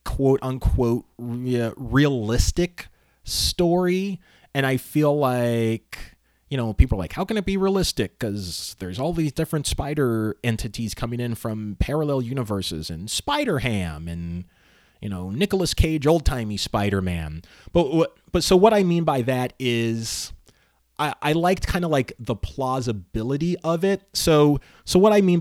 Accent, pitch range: American, 95-135 Hz